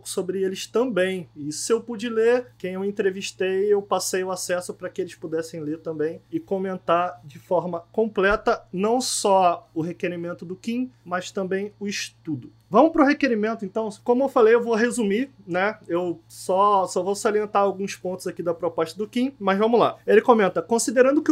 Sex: male